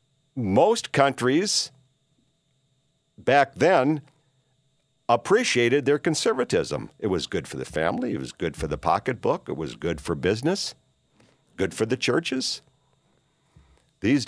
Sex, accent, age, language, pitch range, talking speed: male, American, 50-69, English, 110-145 Hz, 120 wpm